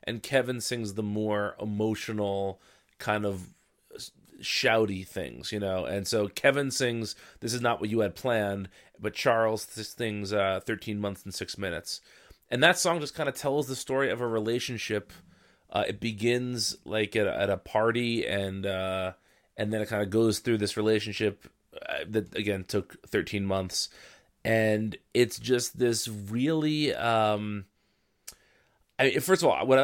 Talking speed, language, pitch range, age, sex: 165 wpm, English, 105-120 Hz, 30-49, male